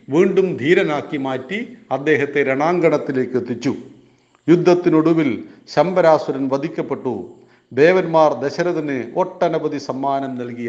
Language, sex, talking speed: Hindi, male, 65 wpm